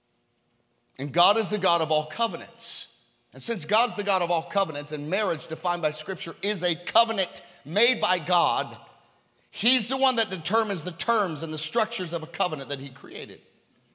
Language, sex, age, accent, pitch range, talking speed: English, male, 40-59, American, 170-225 Hz, 185 wpm